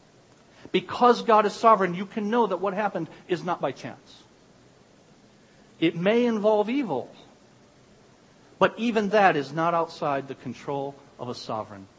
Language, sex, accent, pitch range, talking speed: English, male, American, 150-230 Hz, 145 wpm